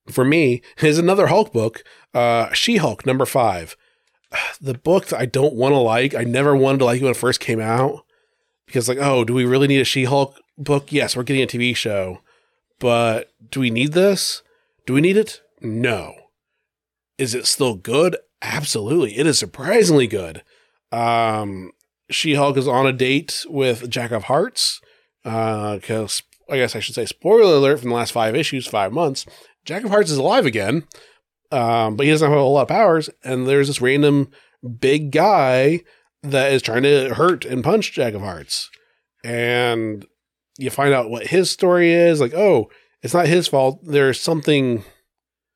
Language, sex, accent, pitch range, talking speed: English, male, American, 120-150 Hz, 180 wpm